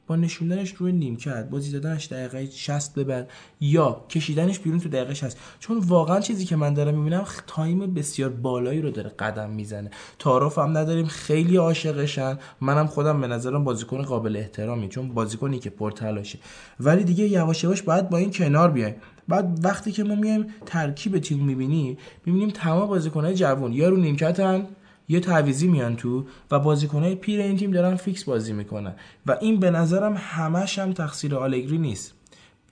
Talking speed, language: 165 wpm, Persian